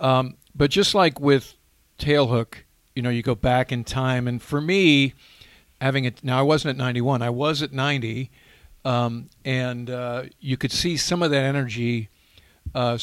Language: English